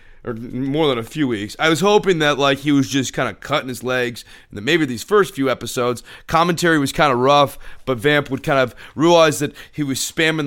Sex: male